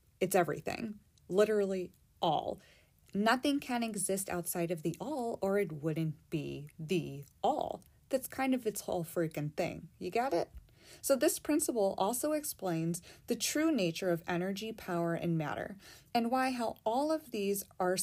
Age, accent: 30-49, American